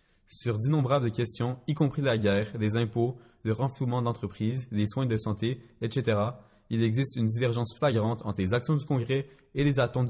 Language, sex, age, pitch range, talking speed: French, male, 20-39, 100-125 Hz, 180 wpm